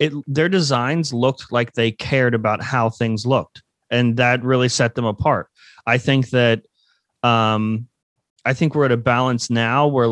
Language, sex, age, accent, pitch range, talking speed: English, male, 30-49, American, 115-135 Hz, 165 wpm